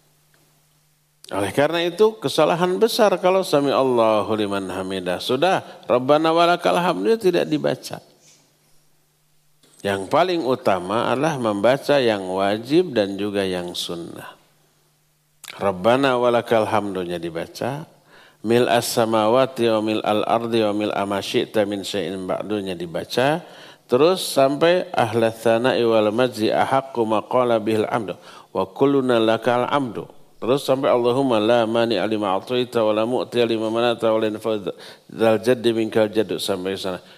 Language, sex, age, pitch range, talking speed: Indonesian, male, 50-69, 105-140 Hz, 95 wpm